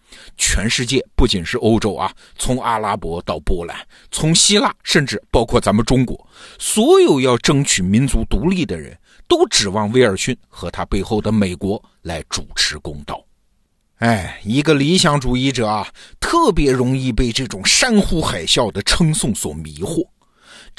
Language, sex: Chinese, male